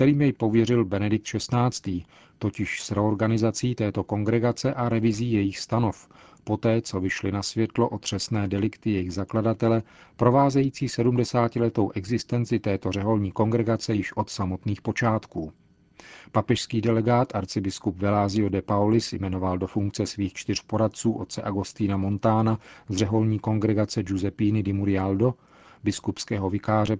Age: 40-59